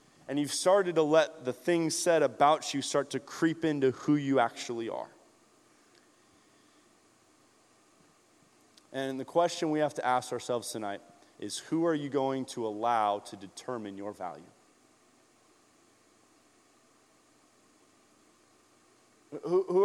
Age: 20-39